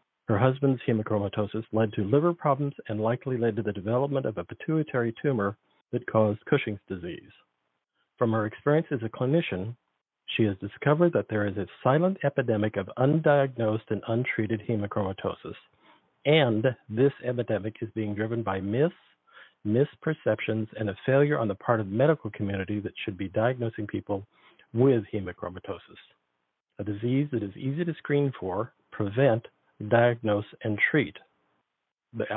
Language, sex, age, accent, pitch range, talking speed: English, male, 50-69, American, 105-130 Hz, 150 wpm